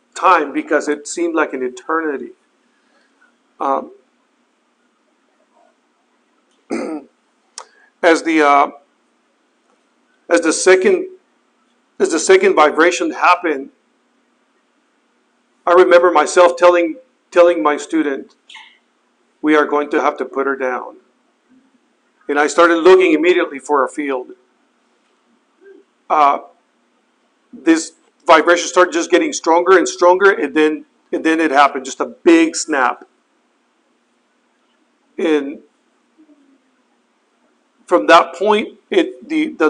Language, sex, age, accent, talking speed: English, male, 50-69, American, 105 wpm